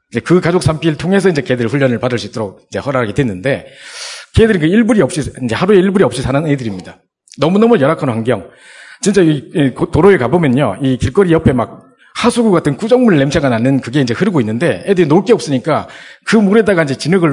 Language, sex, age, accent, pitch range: Korean, male, 40-59, native, 125-195 Hz